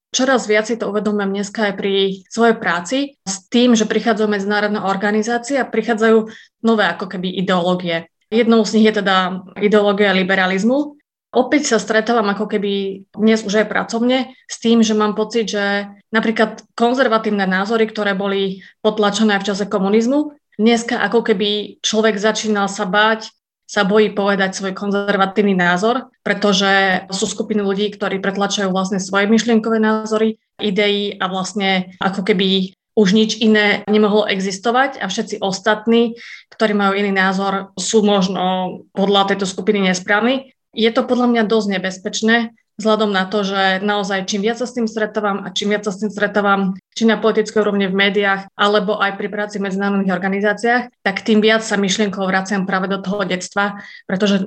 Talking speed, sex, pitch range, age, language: 160 wpm, female, 195-220 Hz, 20-39, Slovak